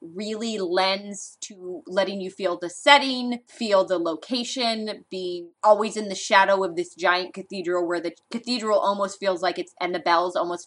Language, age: English, 20-39